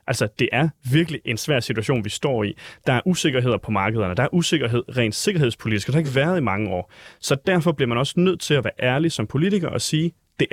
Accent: native